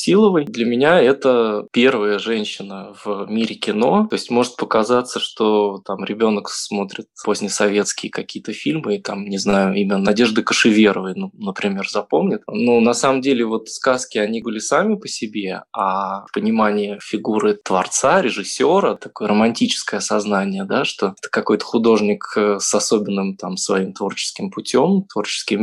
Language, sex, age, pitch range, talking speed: Russian, male, 20-39, 105-130 Hz, 145 wpm